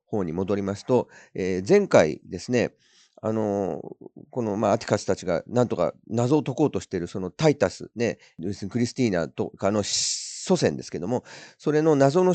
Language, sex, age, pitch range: Japanese, male, 40-59, 95-150 Hz